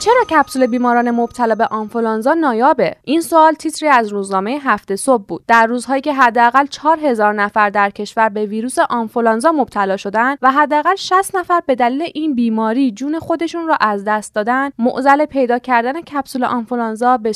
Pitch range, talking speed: 225-290 Hz, 165 wpm